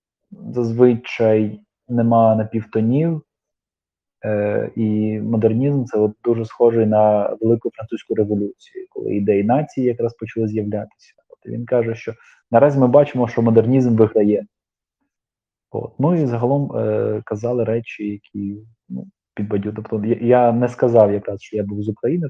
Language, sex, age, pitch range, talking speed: Ukrainian, male, 20-39, 105-125 Hz, 135 wpm